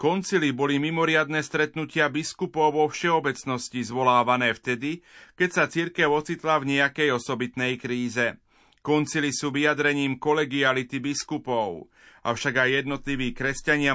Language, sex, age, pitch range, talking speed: Slovak, male, 30-49, 125-150 Hz, 110 wpm